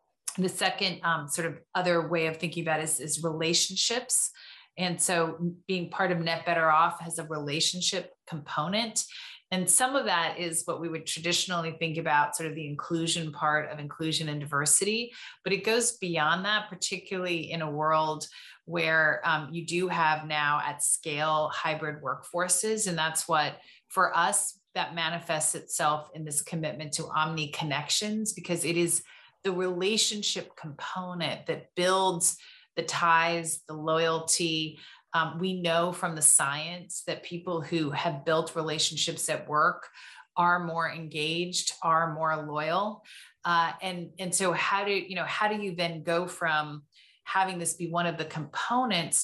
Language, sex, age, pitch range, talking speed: English, female, 30-49, 155-185 Hz, 155 wpm